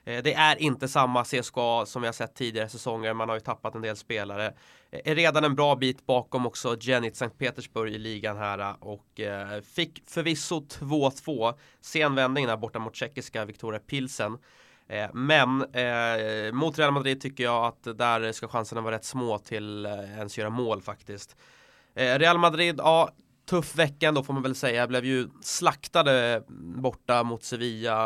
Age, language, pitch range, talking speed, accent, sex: 20-39, English, 110-130 Hz, 165 wpm, Swedish, male